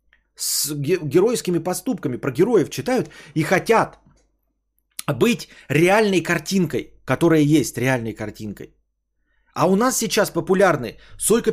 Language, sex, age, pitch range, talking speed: Bulgarian, male, 30-49, 155-215 Hz, 110 wpm